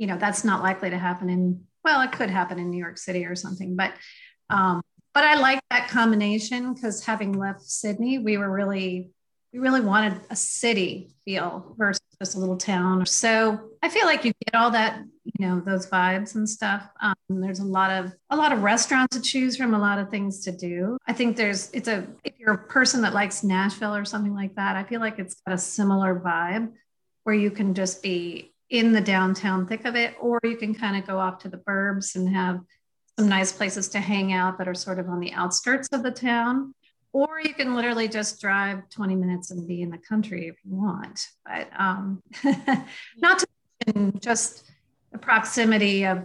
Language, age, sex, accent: English, 30-49, female, American